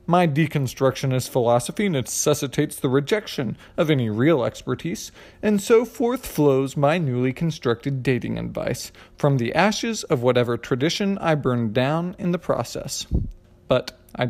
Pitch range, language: 130-180 Hz, English